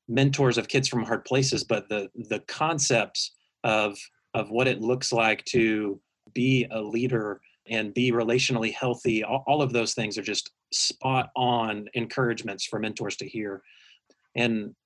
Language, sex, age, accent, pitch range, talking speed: English, male, 30-49, American, 110-130 Hz, 160 wpm